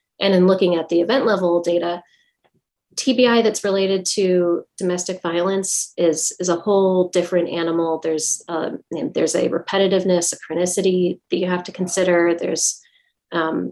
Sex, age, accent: female, 30-49, American